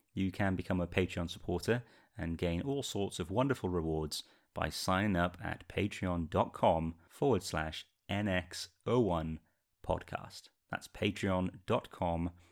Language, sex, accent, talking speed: English, male, British, 110 wpm